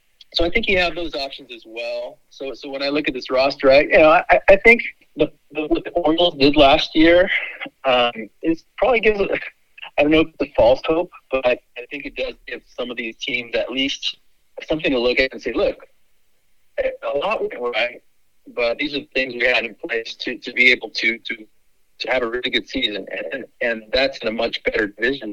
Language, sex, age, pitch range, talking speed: English, male, 40-59, 115-170 Hz, 230 wpm